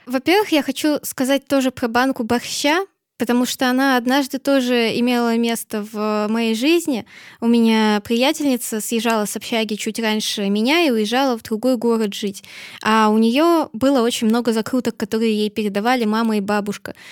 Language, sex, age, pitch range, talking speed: Russian, female, 20-39, 225-275 Hz, 160 wpm